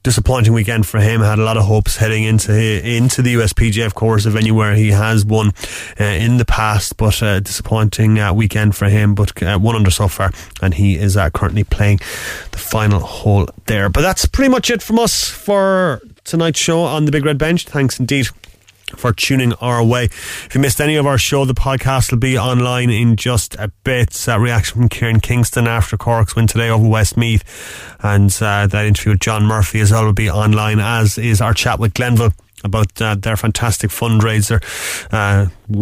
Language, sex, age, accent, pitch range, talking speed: English, male, 30-49, Irish, 105-130 Hz, 205 wpm